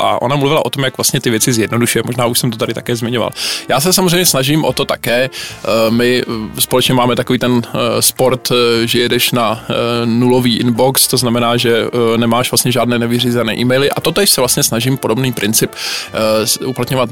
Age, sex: 20-39, male